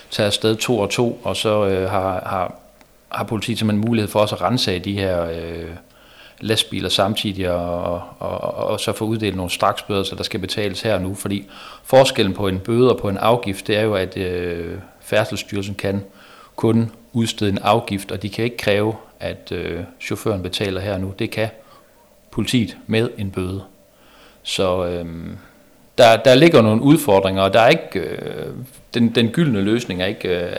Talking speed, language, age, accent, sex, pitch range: 190 wpm, Danish, 40-59, native, male, 95-115 Hz